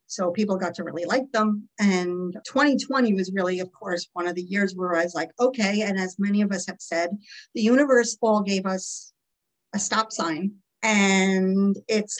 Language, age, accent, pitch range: English, 50-69, American, 190-230 Hz